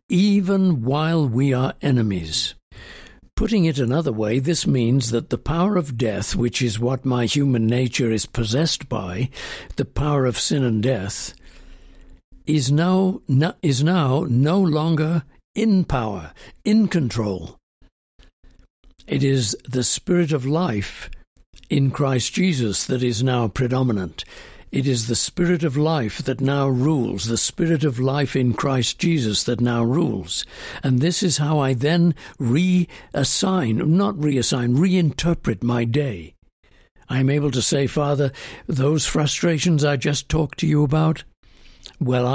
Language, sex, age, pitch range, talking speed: English, male, 60-79, 120-155 Hz, 140 wpm